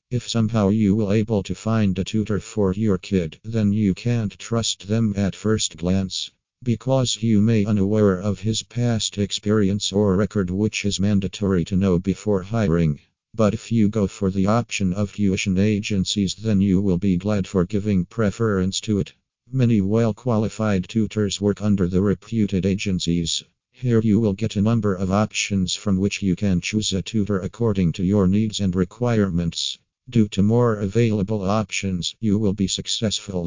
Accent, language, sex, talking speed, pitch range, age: American, English, male, 170 wpm, 95-110 Hz, 50-69